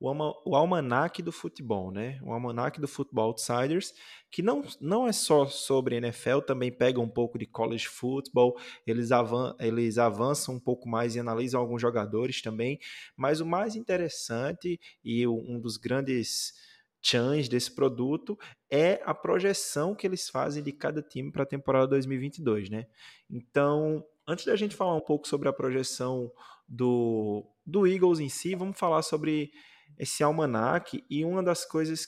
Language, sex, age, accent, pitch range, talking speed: Portuguese, male, 20-39, Brazilian, 120-160 Hz, 160 wpm